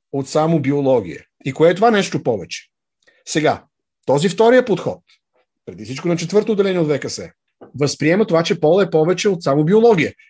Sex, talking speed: male, 165 wpm